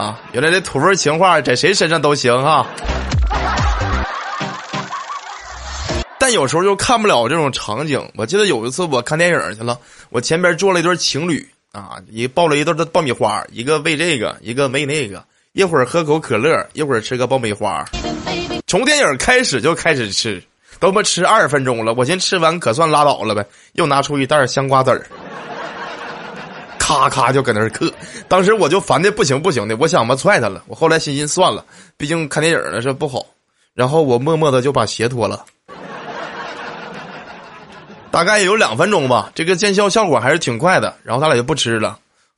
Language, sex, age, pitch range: Chinese, male, 20-39, 125-185 Hz